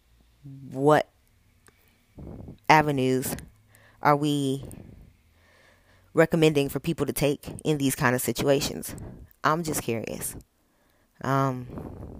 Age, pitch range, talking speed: 20-39, 120-150 Hz, 90 wpm